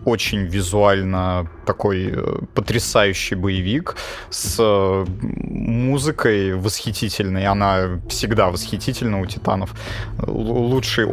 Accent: native